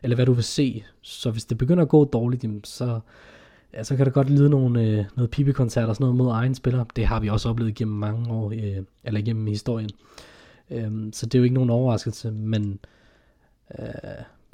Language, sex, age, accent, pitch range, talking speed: Danish, male, 20-39, native, 110-130 Hz, 210 wpm